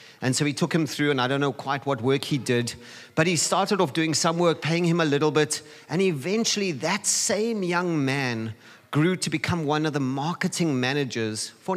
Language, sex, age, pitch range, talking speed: English, male, 40-59, 135-185 Hz, 215 wpm